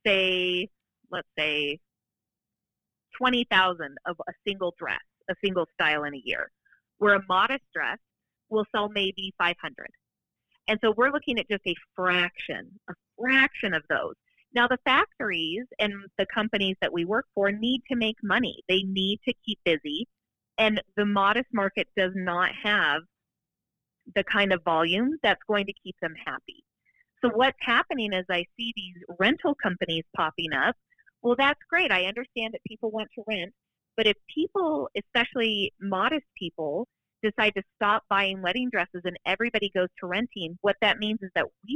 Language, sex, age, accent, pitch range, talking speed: English, female, 30-49, American, 175-225 Hz, 165 wpm